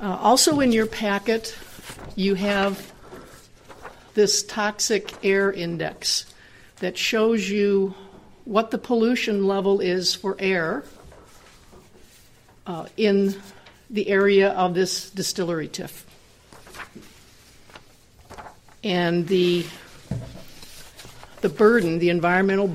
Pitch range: 175-205 Hz